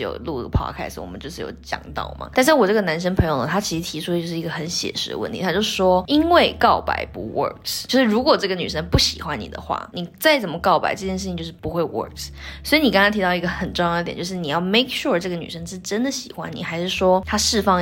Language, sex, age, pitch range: Chinese, female, 20-39, 165-210 Hz